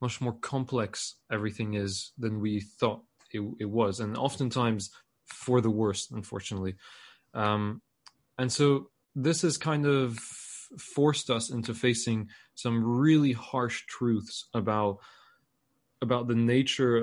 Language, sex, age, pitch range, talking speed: English, male, 20-39, 110-125 Hz, 125 wpm